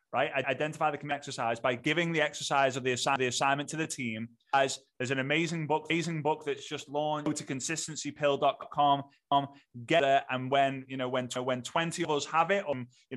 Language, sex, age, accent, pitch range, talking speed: English, male, 20-39, British, 125-160 Hz, 210 wpm